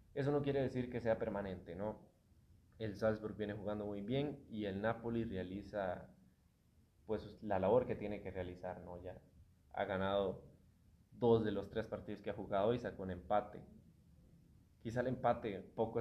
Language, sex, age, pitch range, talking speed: Spanish, male, 20-39, 95-110 Hz, 170 wpm